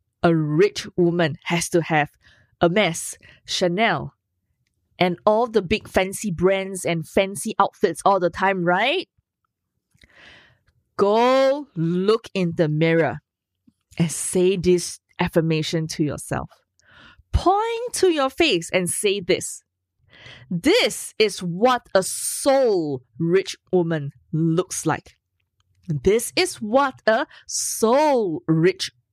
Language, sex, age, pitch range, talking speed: English, female, 20-39, 145-215 Hz, 115 wpm